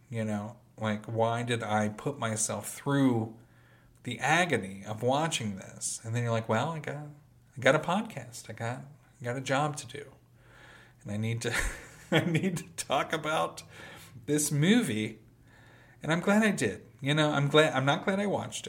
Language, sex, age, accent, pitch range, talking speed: English, male, 40-59, American, 115-140 Hz, 185 wpm